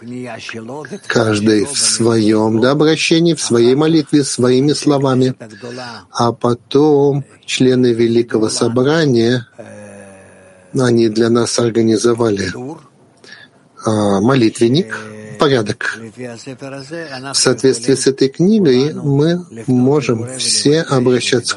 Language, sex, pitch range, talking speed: Russian, male, 115-135 Hz, 85 wpm